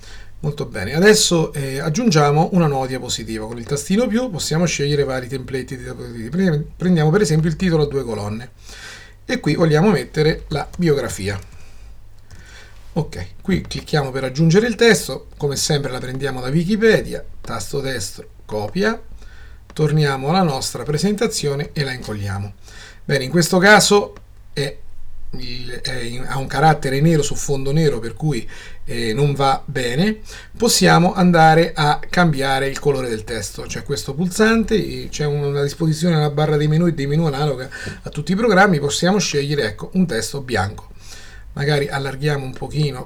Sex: male